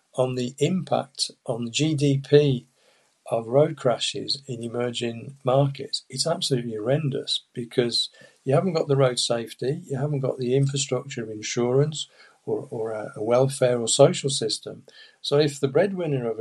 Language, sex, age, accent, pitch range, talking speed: English, male, 50-69, British, 125-145 Hz, 145 wpm